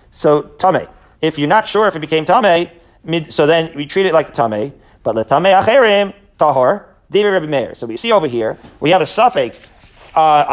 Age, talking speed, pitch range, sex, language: 40-59, 155 wpm, 145-185 Hz, male, English